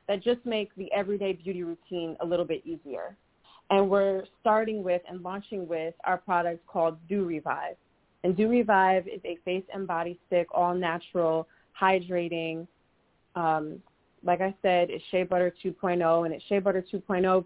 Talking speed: 165 wpm